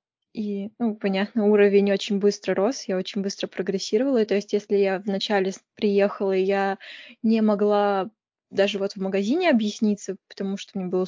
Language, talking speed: Russian, 155 wpm